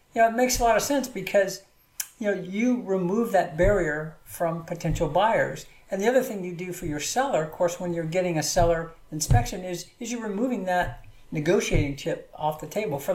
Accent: American